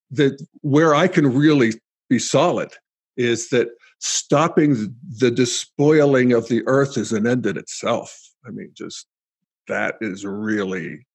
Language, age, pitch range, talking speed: English, 50-69, 130-165 Hz, 140 wpm